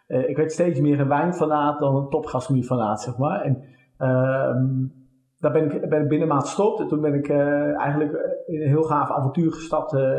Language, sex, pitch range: Dutch, male, 135-155 Hz